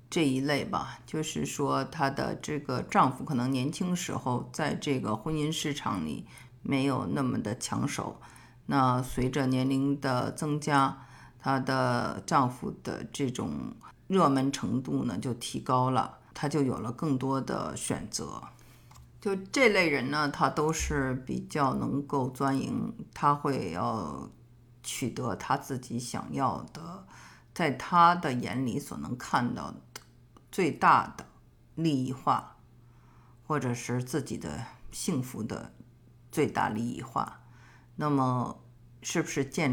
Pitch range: 125-150 Hz